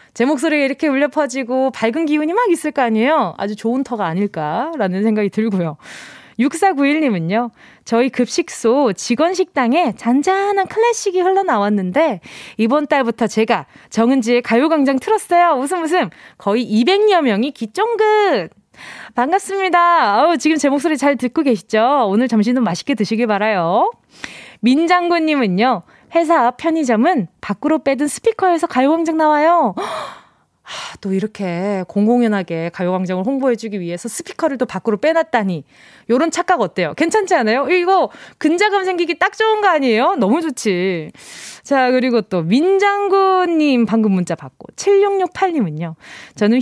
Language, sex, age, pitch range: Korean, female, 20-39, 225-345 Hz